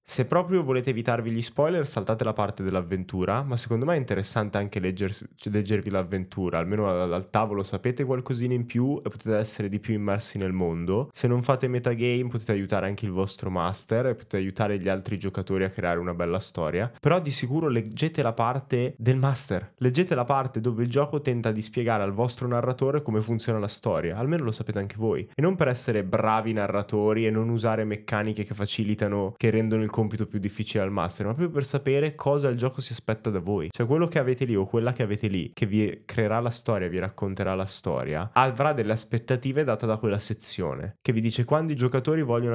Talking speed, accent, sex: 205 wpm, native, male